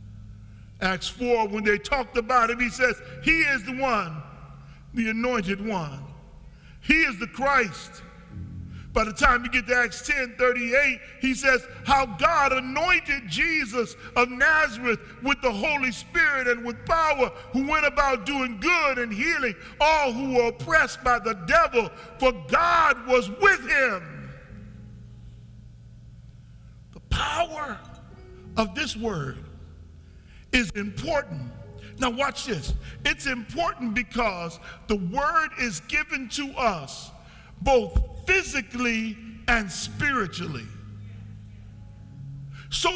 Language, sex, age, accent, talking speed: English, male, 50-69, American, 120 wpm